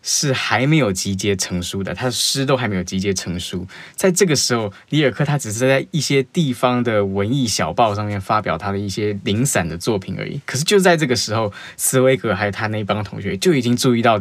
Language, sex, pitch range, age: Chinese, male, 100-125 Hz, 10-29